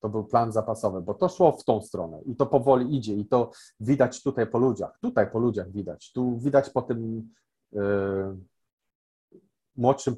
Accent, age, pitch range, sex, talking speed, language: native, 30-49, 105-125 Hz, male, 170 wpm, Polish